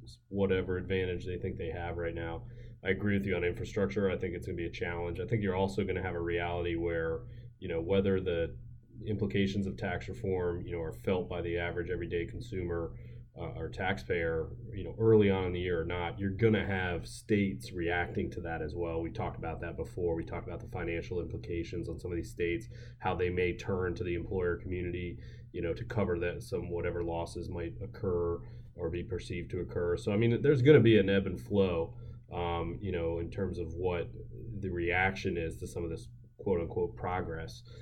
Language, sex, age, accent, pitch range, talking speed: English, male, 30-49, American, 85-110 Hz, 215 wpm